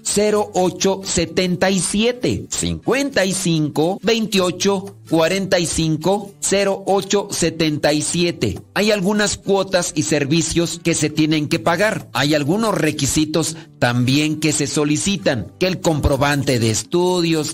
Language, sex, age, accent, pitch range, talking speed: Spanish, male, 40-59, Mexican, 145-185 Hz, 90 wpm